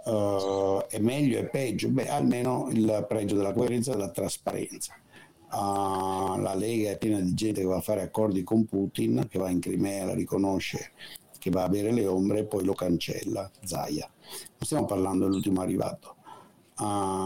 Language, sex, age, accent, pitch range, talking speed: Italian, male, 60-79, native, 95-120 Hz, 175 wpm